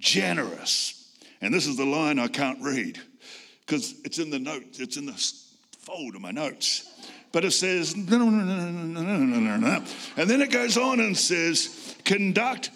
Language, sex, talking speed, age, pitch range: English, male, 150 wpm, 60-79, 185-265 Hz